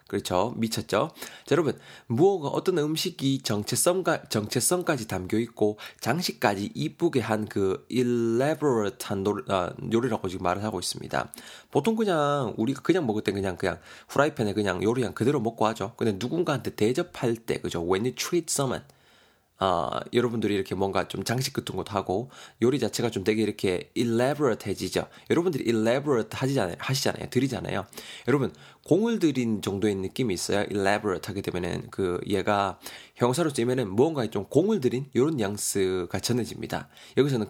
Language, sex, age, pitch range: Korean, male, 20-39, 100-130 Hz